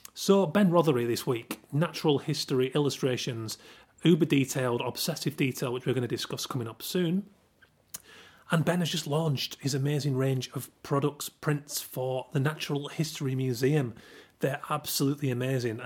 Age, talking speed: 30-49, 150 wpm